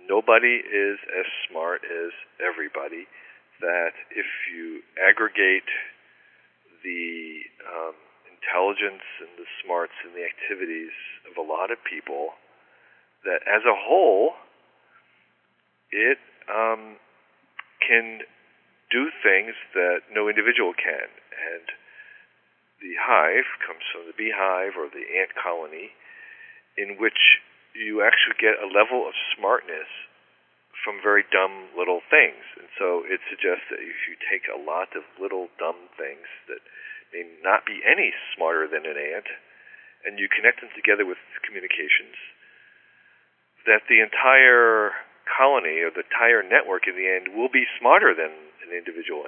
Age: 50-69